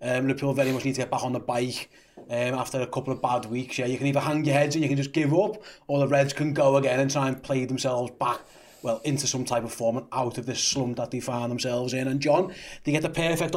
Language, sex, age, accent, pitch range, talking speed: English, male, 30-49, British, 130-150 Hz, 290 wpm